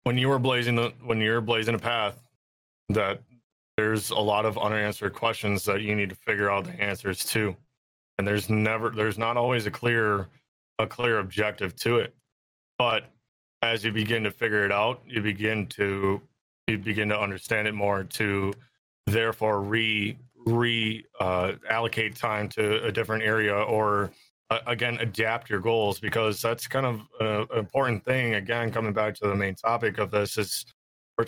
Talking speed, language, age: 175 wpm, English, 20-39